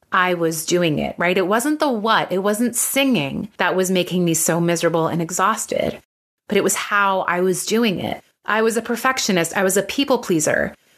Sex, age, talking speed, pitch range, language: female, 30-49, 200 wpm, 180-230 Hz, English